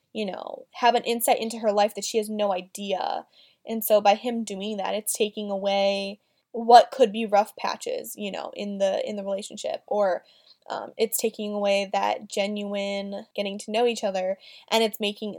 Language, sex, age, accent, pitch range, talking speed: English, female, 10-29, American, 205-245 Hz, 190 wpm